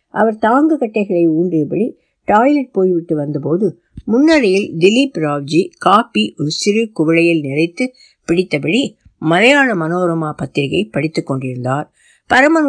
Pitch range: 145-200 Hz